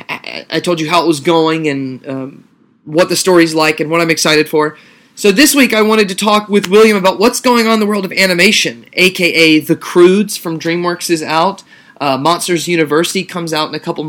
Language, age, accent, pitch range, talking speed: English, 20-39, American, 155-225 Hz, 215 wpm